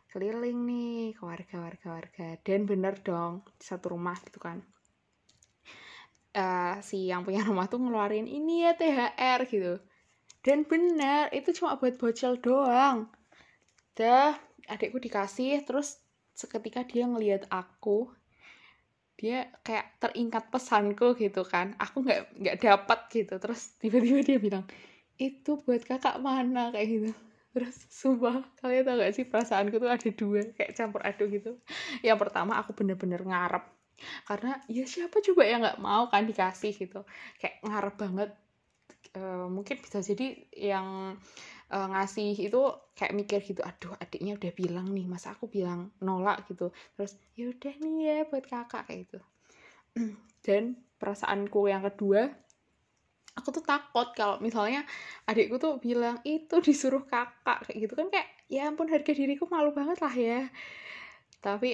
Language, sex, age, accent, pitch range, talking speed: Indonesian, female, 10-29, native, 200-255 Hz, 145 wpm